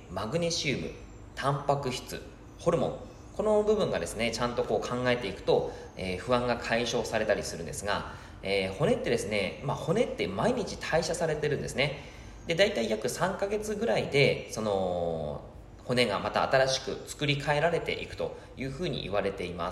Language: Japanese